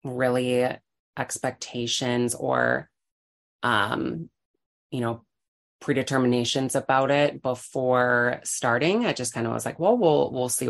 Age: 20-39